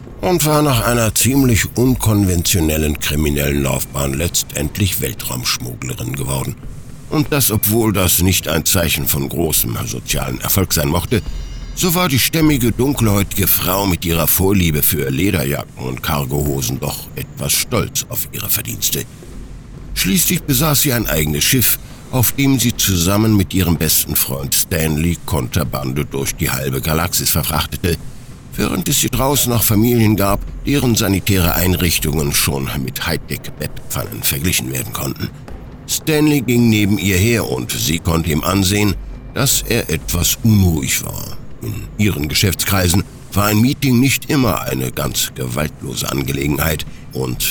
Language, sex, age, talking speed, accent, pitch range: German, male, 60-79, 140 wpm, German, 75-115 Hz